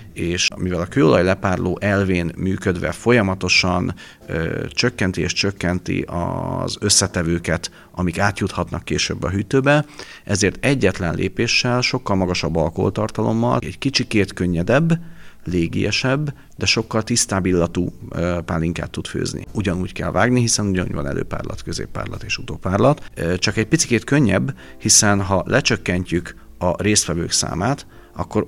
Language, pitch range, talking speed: Hungarian, 90-110 Hz, 125 wpm